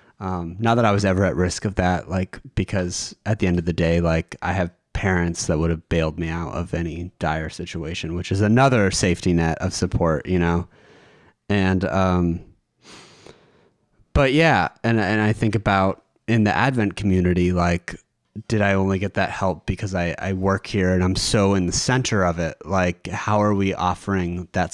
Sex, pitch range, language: male, 85-100 Hz, English